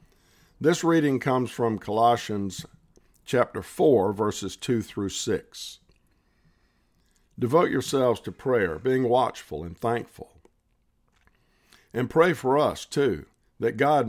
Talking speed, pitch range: 110 wpm, 100-130 Hz